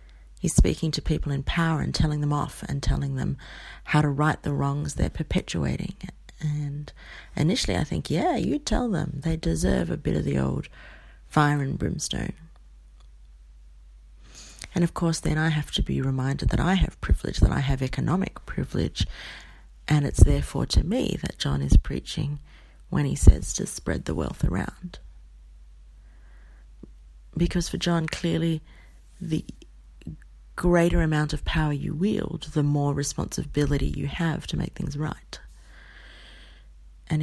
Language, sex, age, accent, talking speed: English, female, 30-49, Australian, 150 wpm